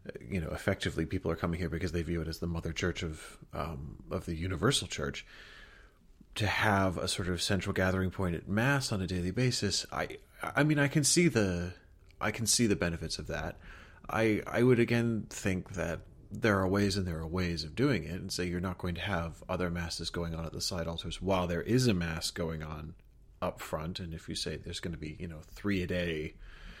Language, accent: English, American